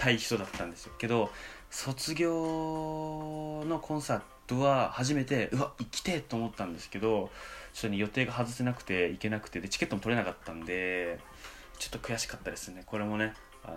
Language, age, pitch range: Japanese, 20-39, 90-115 Hz